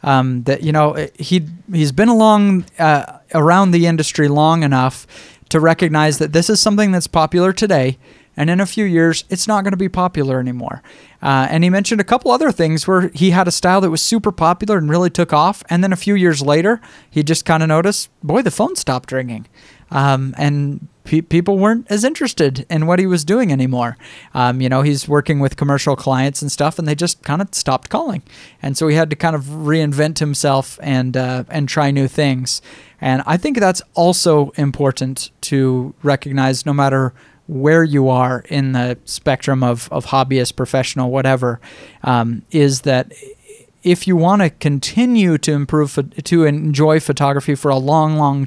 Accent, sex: American, male